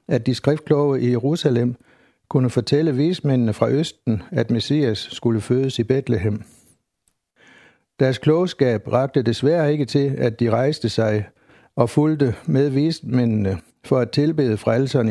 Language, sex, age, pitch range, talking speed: Danish, male, 60-79, 115-145 Hz, 135 wpm